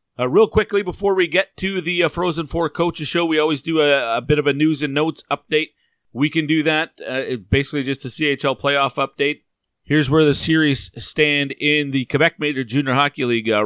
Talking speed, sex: 215 wpm, male